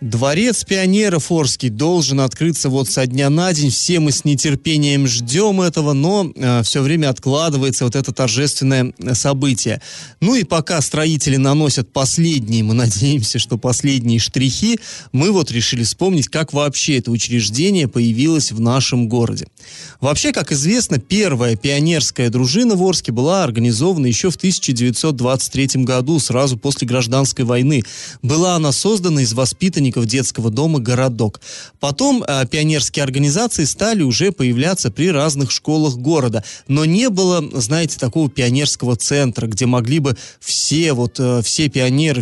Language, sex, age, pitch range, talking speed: Russian, male, 30-49, 125-160 Hz, 140 wpm